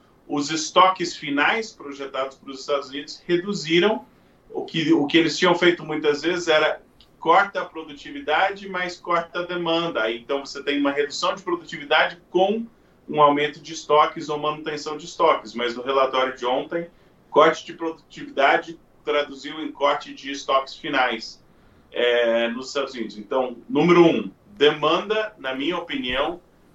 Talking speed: 145 wpm